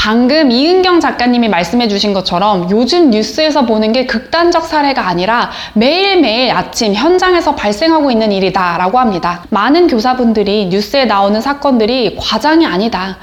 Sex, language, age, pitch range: female, Korean, 20-39, 210-300 Hz